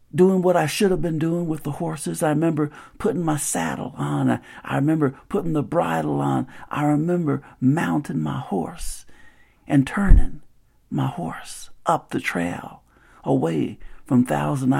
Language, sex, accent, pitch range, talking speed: English, male, American, 135-180 Hz, 155 wpm